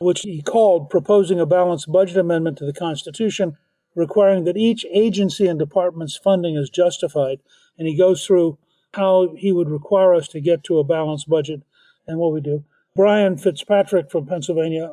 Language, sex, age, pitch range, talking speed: English, male, 50-69, 155-185 Hz, 175 wpm